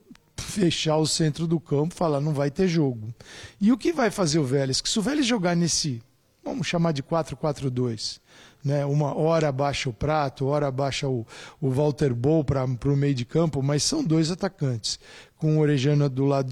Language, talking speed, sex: Portuguese, 195 wpm, male